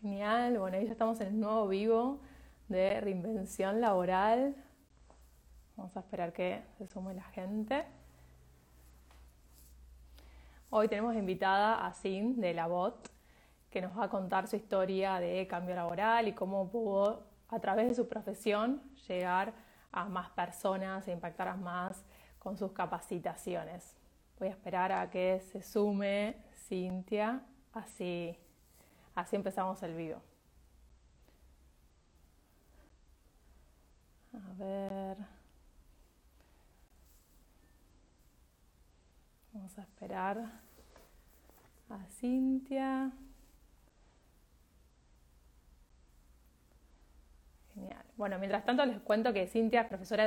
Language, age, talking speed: Spanish, 20-39, 105 wpm